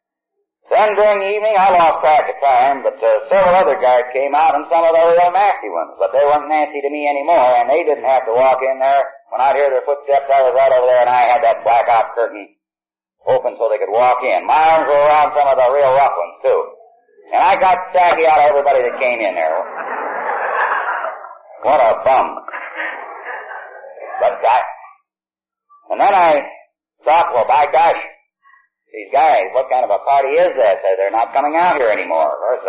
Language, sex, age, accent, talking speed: English, male, 50-69, American, 200 wpm